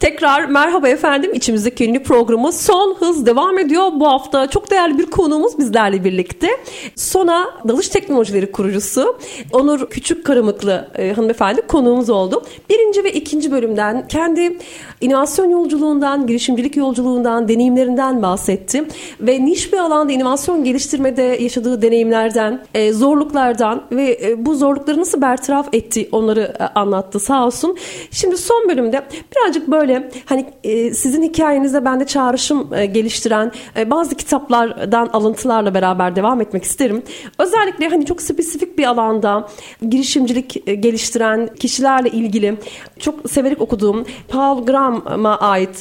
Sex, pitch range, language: female, 220-300 Hz, Turkish